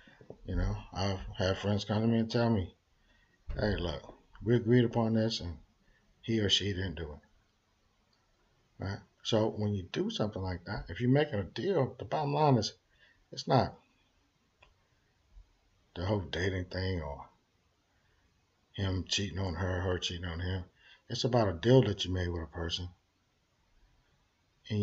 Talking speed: 160 wpm